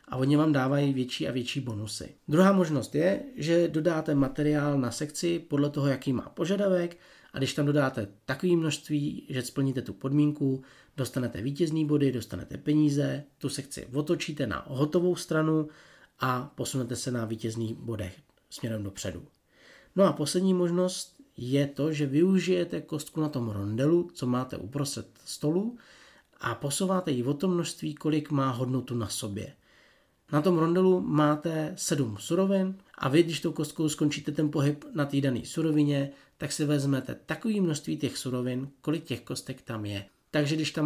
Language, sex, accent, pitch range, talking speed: Czech, male, native, 130-165 Hz, 160 wpm